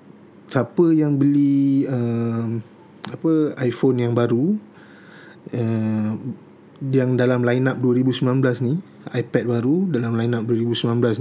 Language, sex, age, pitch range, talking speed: Malay, male, 20-39, 120-150 Hz, 100 wpm